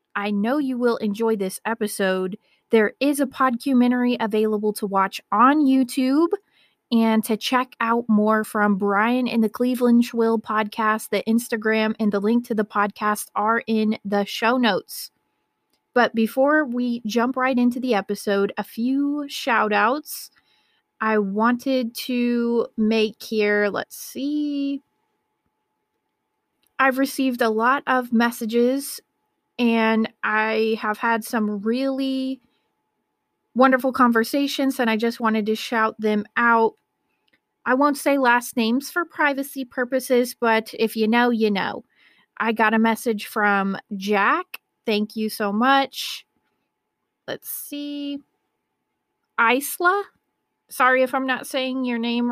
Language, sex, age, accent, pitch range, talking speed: English, female, 20-39, American, 220-265 Hz, 135 wpm